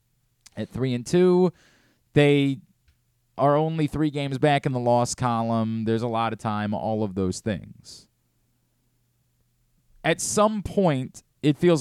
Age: 30-49